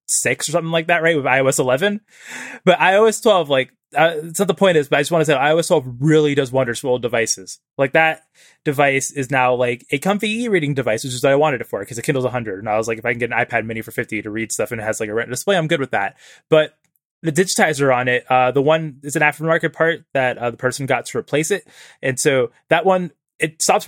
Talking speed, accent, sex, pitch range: 265 wpm, American, male, 130-175 Hz